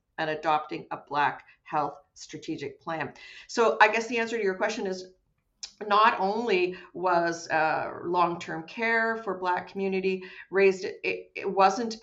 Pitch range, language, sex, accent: 160-190 Hz, English, female, American